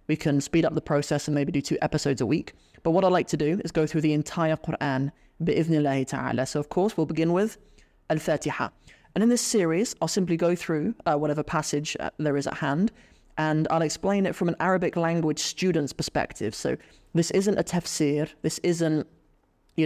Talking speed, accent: 200 wpm, British